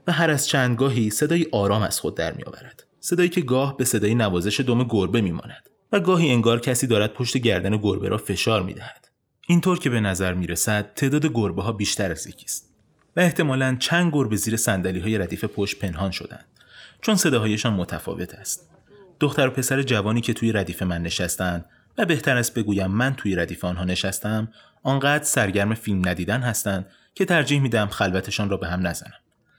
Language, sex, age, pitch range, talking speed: Persian, male, 30-49, 100-135 Hz, 180 wpm